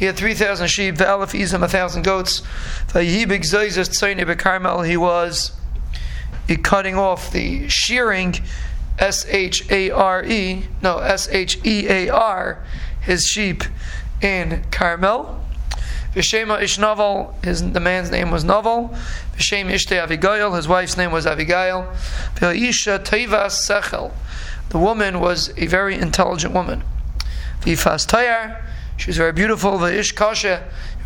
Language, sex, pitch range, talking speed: English, male, 165-200 Hz, 125 wpm